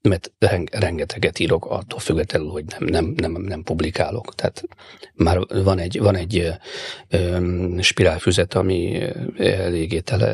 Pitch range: 95-115 Hz